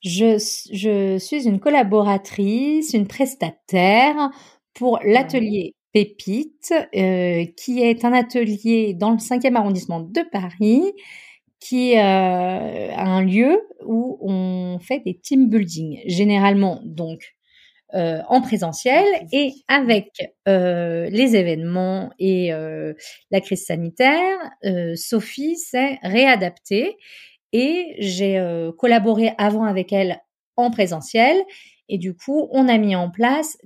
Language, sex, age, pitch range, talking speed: French, female, 40-59, 185-250 Hz, 120 wpm